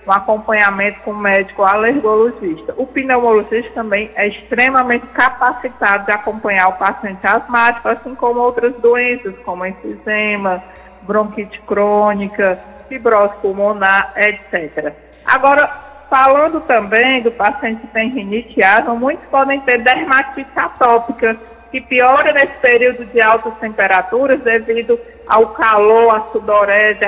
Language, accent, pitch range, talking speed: Portuguese, Brazilian, 210-255 Hz, 120 wpm